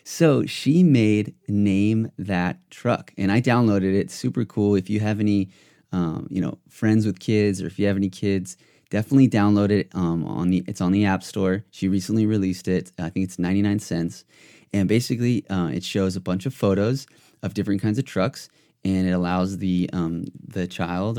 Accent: American